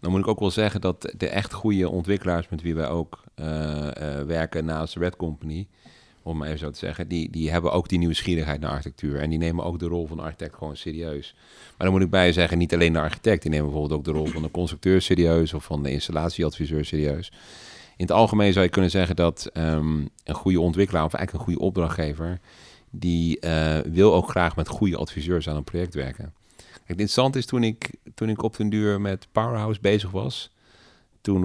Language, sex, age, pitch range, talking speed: Dutch, male, 40-59, 80-95 Hz, 225 wpm